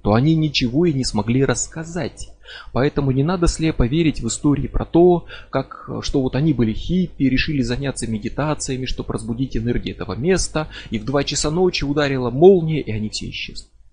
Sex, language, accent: male, Russian, native